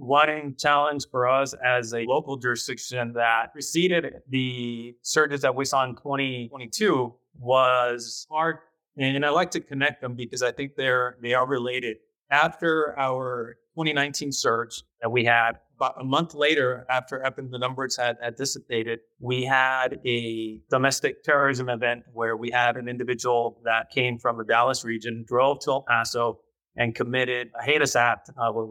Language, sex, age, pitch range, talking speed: English, male, 30-49, 120-140 Hz, 155 wpm